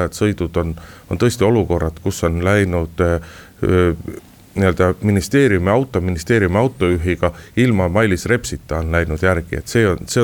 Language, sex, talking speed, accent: Finnish, male, 125 wpm, native